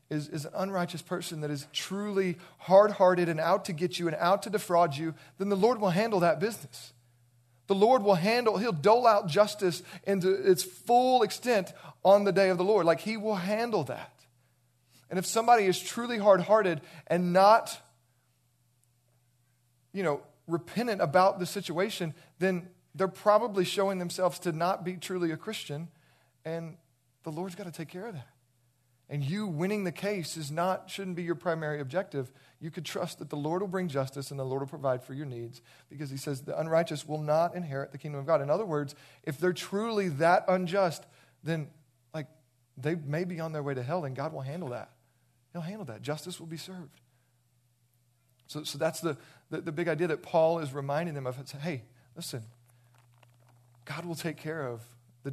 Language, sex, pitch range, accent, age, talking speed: English, male, 135-185 Hz, American, 40-59, 190 wpm